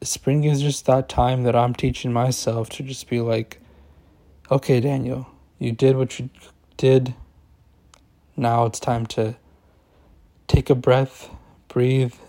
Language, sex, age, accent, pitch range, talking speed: English, male, 20-39, American, 110-125 Hz, 135 wpm